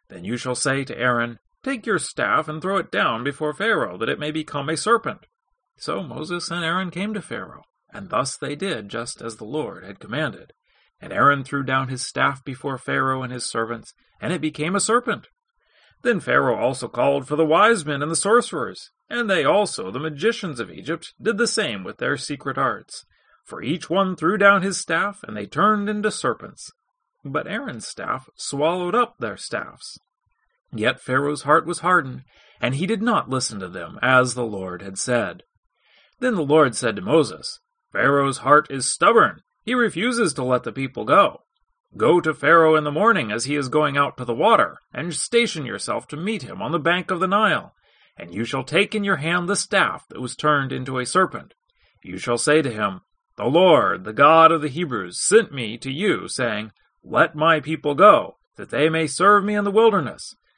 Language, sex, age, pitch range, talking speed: English, male, 40-59, 130-200 Hz, 200 wpm